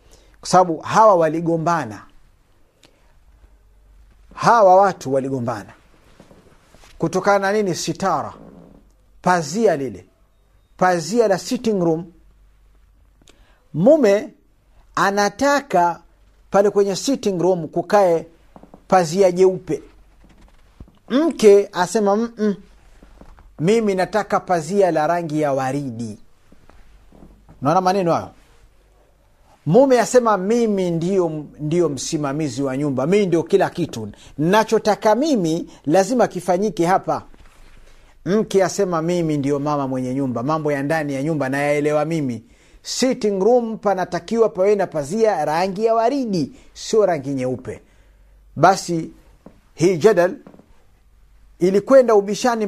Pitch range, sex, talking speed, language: 140-200 Hz, male, 100 wpm, Swahili